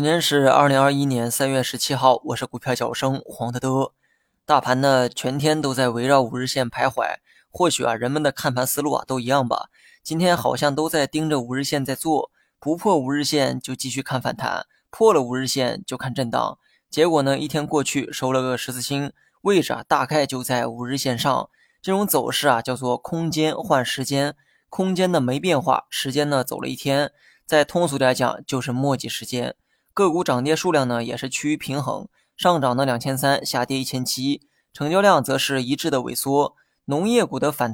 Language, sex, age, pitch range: Chinese, male, 20-39, 130-150 Hz